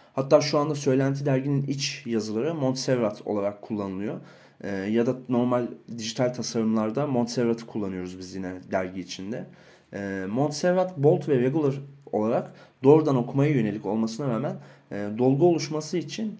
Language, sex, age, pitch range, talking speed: Turkish, male, 30-49, 115-150 Hz, 135 wpm